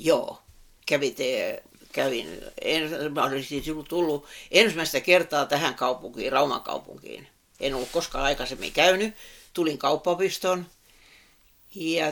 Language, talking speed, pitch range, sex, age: Finnish, 100 wpm, 140-190 Hz, female, 60-79